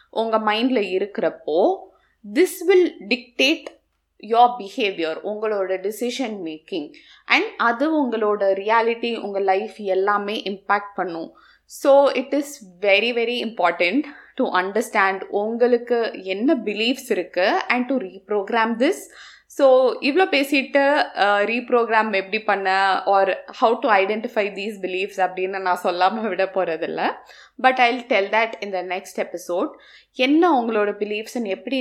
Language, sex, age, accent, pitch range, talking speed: Tamil, female, 20-39, native, 190-260 Hz, 120 wpm